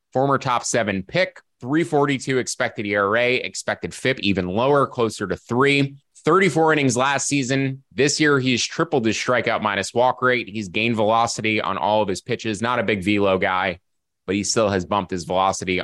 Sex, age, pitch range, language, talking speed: male, 20-39, 95-120 Hz, English, 180 wpm